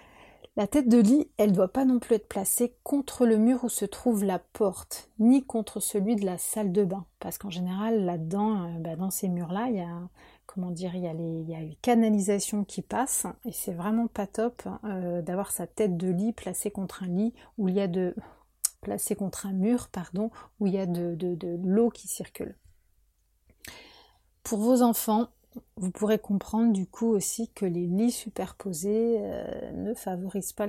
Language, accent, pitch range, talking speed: French, French, 185-230 Hz, 200 wpm